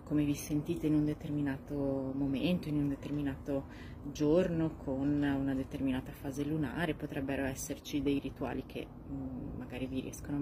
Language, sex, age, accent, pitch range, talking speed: Italian, female, 20-39, native, 140-155 Hz, 140 wpm